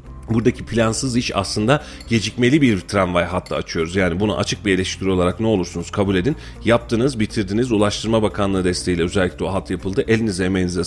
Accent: native